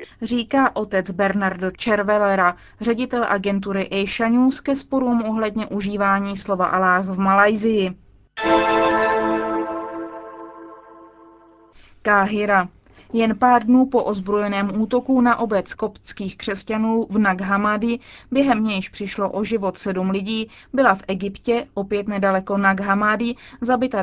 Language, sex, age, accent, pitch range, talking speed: Czech, female, 20-39, native, 195-230 Hz, 105 wpm